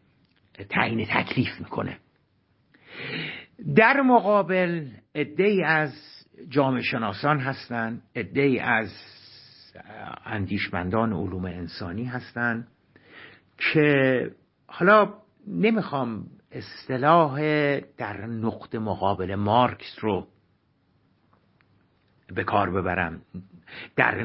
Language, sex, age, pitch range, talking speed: Persian, male, 60-79, 100-155 Hz, 70 wpm